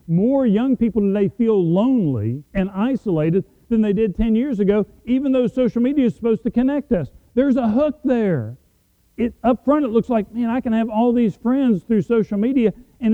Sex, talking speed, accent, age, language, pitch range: male, 195 wpm, American, 40-59, English, 125-205 Hz